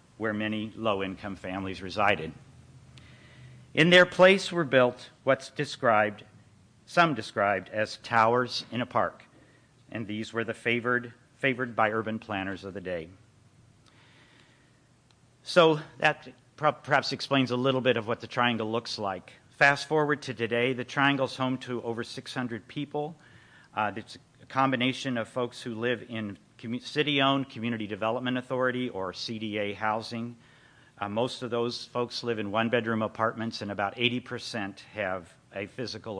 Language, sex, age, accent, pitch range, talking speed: English, male, 50-69, American, 105-130 Hz, 145 wpm